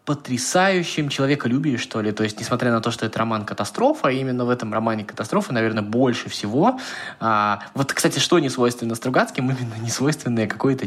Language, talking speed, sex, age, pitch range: Russian, 175 wpm, male, 20-39, 105-125 Hz